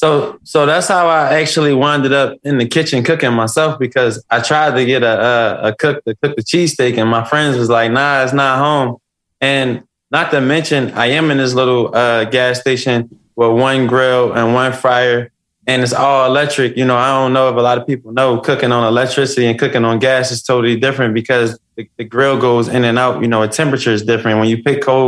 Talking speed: 230 wpm